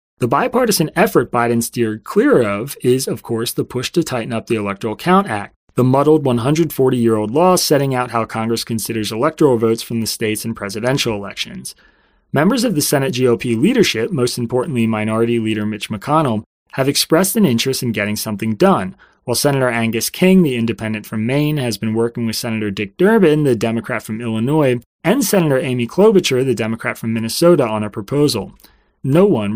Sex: male